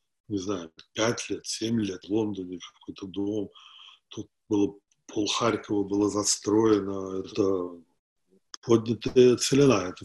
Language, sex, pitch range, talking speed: Russian, male, 100-125 Hz, 120 wpm